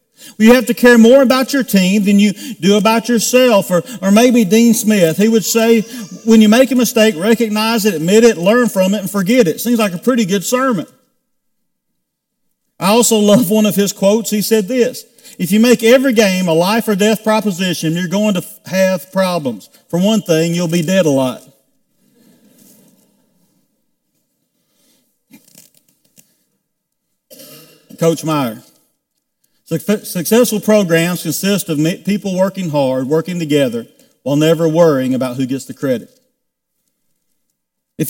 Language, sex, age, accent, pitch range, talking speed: English, male, 50-69, American, 170-230 Hz, 150 wpm